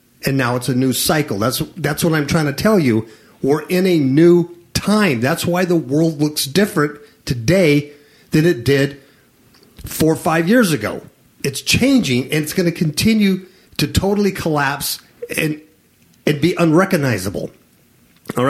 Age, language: 50-69, English